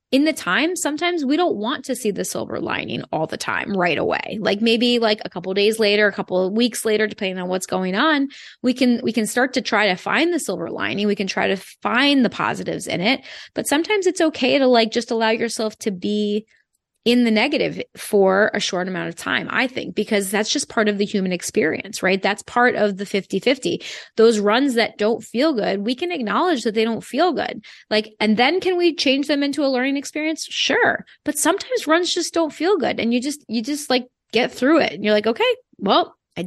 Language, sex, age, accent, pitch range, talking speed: English, female, 20-39, American, 195-255 Hz, 230 wpm